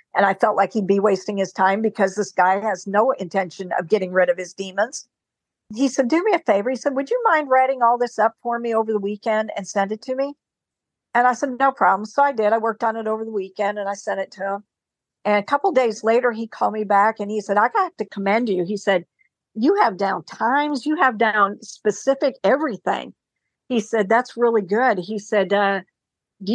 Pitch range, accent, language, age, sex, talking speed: 200-240 Hz, American, English, 50-69, female, 235 wpm